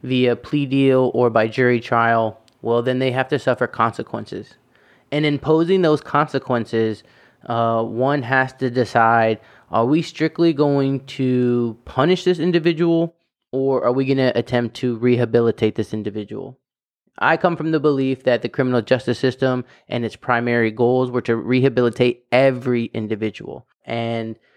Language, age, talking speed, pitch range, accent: English, 20-39, 150 wpm, 115-135 Hz, American